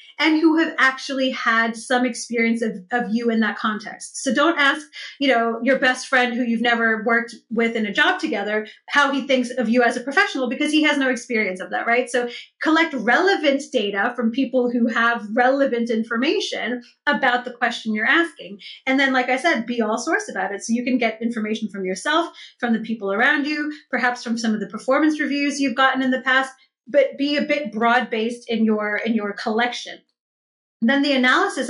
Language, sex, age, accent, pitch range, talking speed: English, female, 30-49, American, 230-285 Hz, 205 wpm